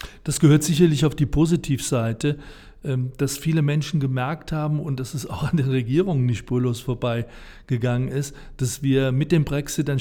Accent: German